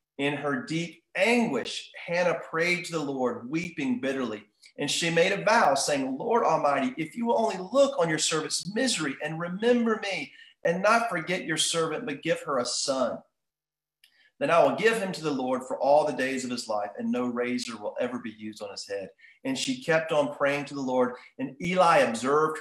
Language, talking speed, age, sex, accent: English, 205 wpm, 40-59, male, American